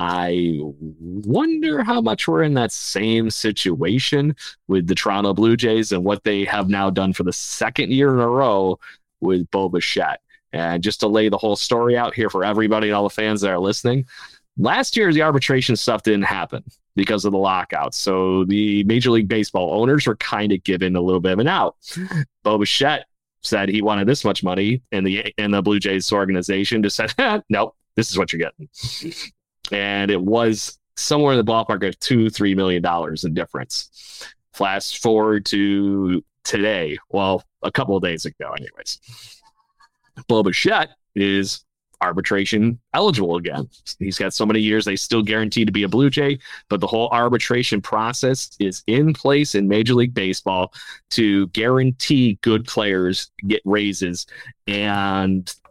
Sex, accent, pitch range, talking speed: male, American, 95-120 Hz, 170 wpm